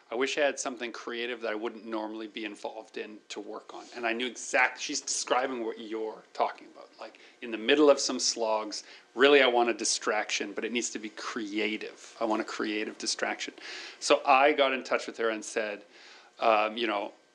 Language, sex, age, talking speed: English, male, 40-59, 210 wpm